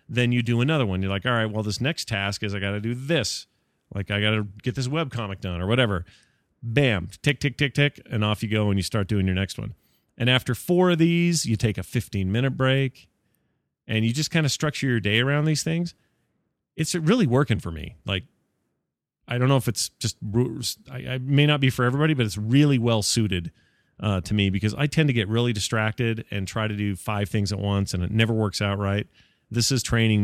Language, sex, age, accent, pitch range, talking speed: English, male, 30-49, American, 100-130 Hz, 225 wpm